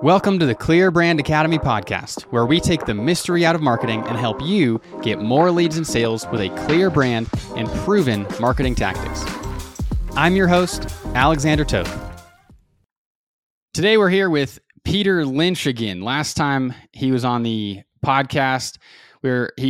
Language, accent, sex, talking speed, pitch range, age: English, American, male, 155 wpm, 115-150 Hz, 20-39